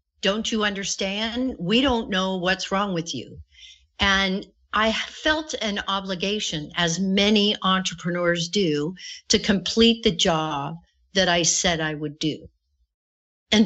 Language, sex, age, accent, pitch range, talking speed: English, female, 50-69, American, 160-205 Hz, 130 wpm